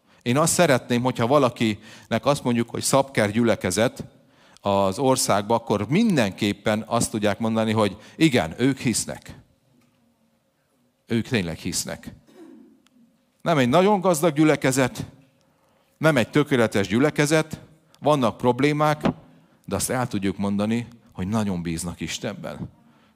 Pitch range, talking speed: 95-125 Hz, 115 wpm